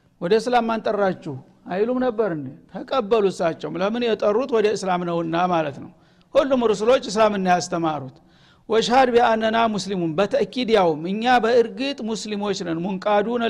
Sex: male